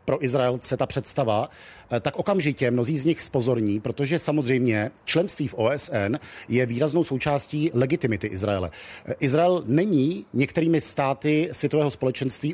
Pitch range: 120-155 Hz